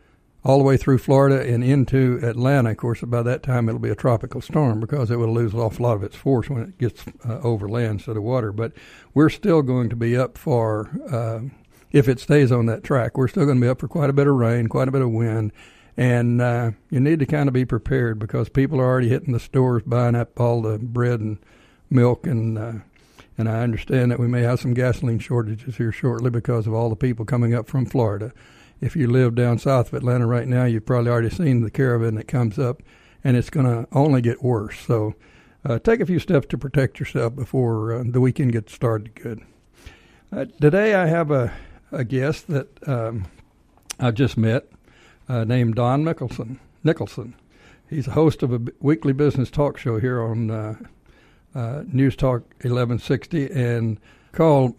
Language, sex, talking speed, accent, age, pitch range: English, male, 210 wpm, American, 60-79, 115-135 Hz